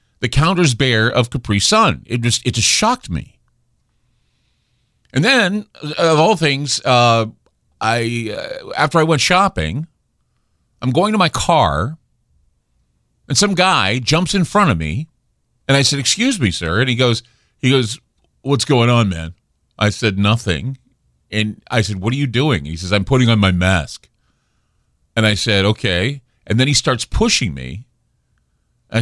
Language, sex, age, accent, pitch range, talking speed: English, male, 50-69, American, 105-160 Hz, 165 wpm